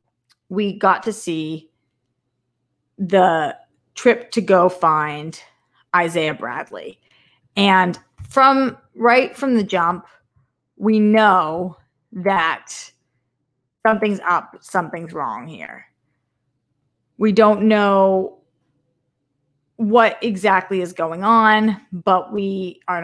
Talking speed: 95 wpm